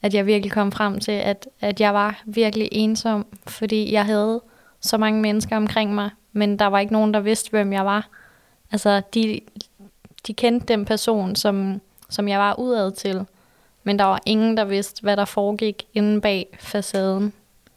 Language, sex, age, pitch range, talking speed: Danish, female, 20-39, 200-215 Hz, 180 wpm